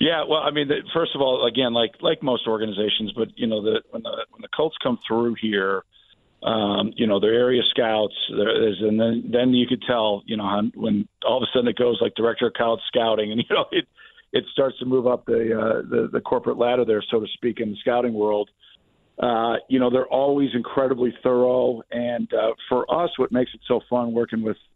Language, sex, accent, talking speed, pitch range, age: English, male, American, 225 wpm, 110-125 Hz, 50-69